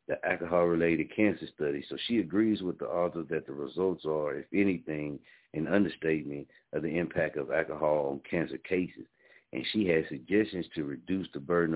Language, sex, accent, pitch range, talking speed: English, male, American, 80-100 Hz, 175 wpm